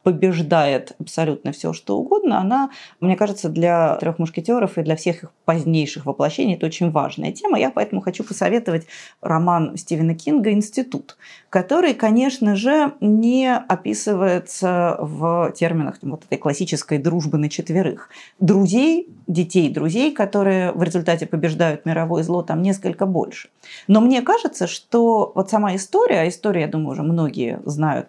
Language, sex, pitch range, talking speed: Russian, female, 160-205 Hz, 145 wpm